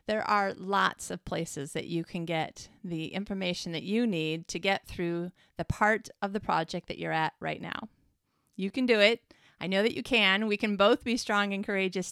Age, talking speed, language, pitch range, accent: 30-49, 215 wpm, English, 175-225 Hz, American